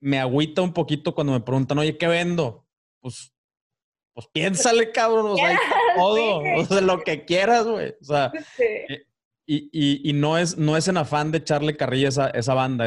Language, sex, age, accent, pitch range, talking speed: Spanish, male, 30-49, Mexican, 120-150 Hz, 185 wpm